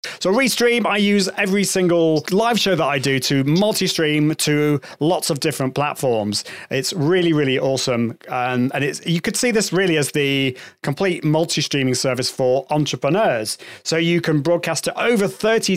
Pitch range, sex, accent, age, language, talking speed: 140-190 Hz, male, British, 30-49, English, 165 wpm